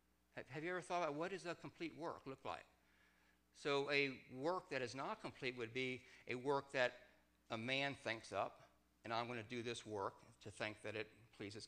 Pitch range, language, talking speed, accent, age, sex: 100-145 Hz, English, 200 wpm, American, 60-79, male